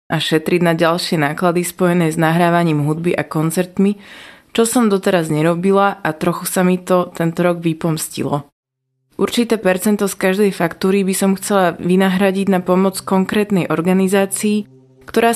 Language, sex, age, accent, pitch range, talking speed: Czech, female, 20-39, native, 160-200 Hz, 145 wpm